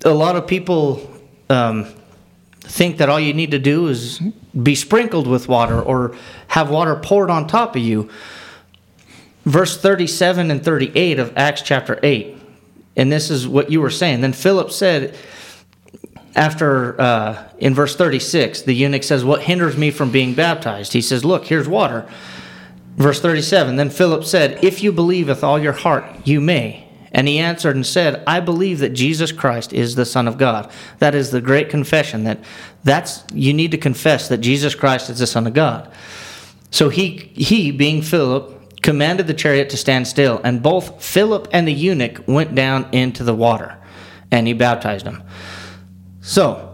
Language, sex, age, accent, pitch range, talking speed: English, male, 40-59, American, 120-160 Hz, 175 wpm